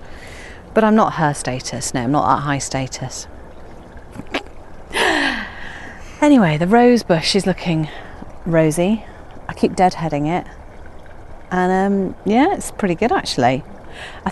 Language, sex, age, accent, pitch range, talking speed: English, female, 40-59, British, 110-180 Hz, 125 wpm